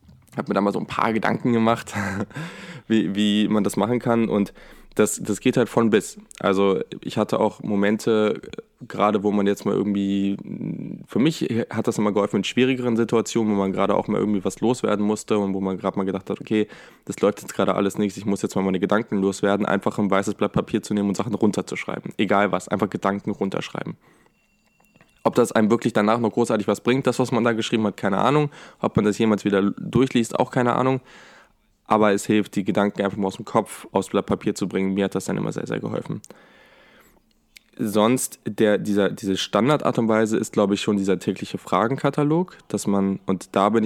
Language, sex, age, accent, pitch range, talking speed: German, male, 10-29, German, 100-115 Hz, 215 wpm